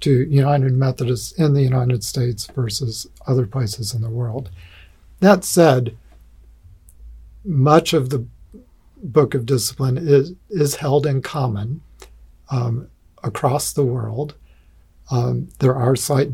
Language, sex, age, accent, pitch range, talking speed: English, male, 50-69, American, 120-140 Hz, 125 wpm